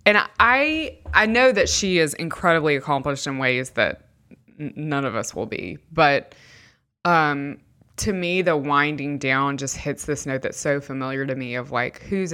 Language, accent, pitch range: English, American, 130-165 Hz